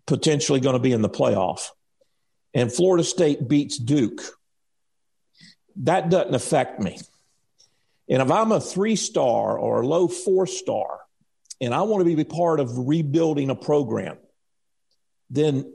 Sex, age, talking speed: male, 50-69, 135 wpm